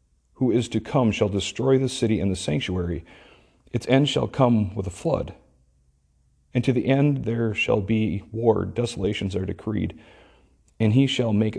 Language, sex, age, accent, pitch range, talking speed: English, male, 40-59, American, 90-115 Hz, 170 wpm